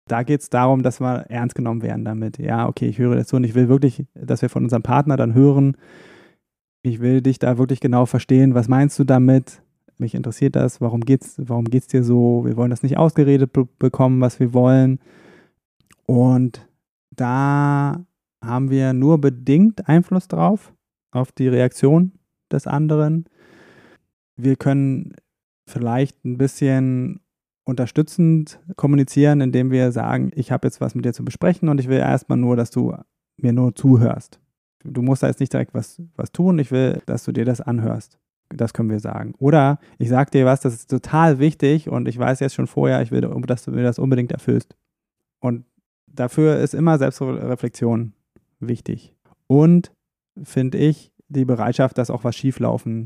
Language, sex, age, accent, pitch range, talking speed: German, male, 20-39, German, 125-145 Hz, 180 wpm